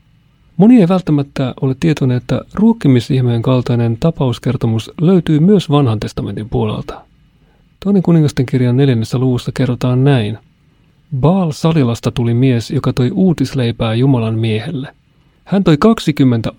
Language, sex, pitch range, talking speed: Finnish, male, 125-155 Hz, 115 wpm